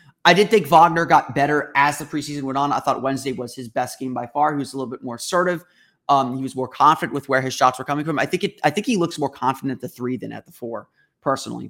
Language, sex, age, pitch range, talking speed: English, male, 30-49, 130-175 Hz, 285 wpm